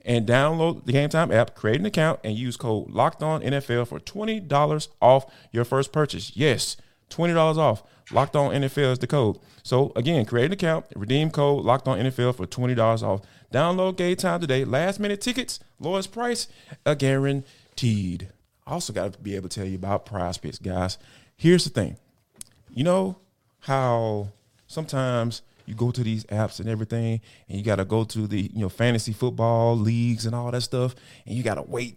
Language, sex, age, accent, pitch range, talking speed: English, male, 30-49, American, 110-155 Hz, 185 wpm